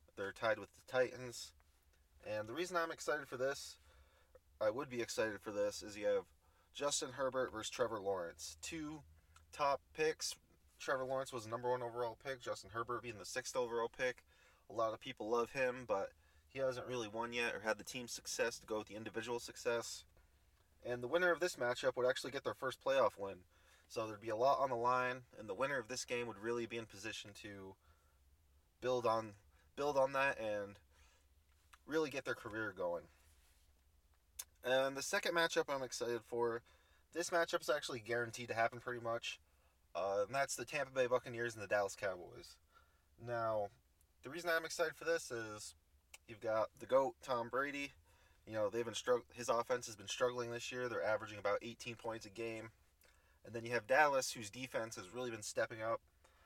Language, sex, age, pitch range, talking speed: English, male, 30-49, 90-130 Hz, 195 wpm